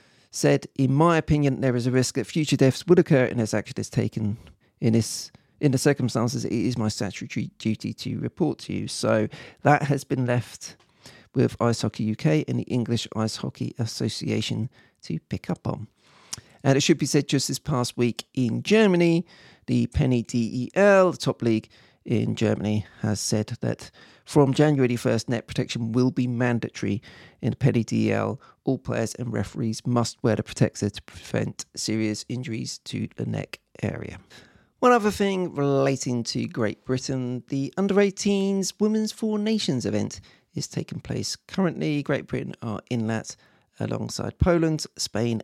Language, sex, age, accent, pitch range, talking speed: English, male, 40-59, British, 115-145 Hz, 165 wpm